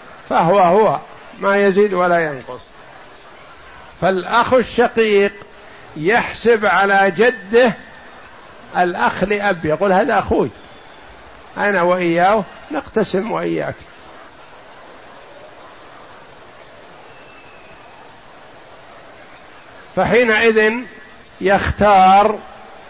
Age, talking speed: 60-79, 60 wpm